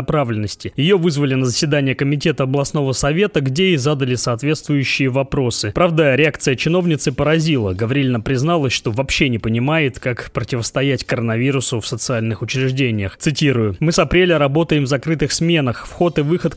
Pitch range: 125-160 Hz